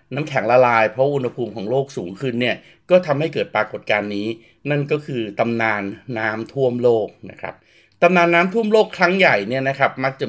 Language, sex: Thai, male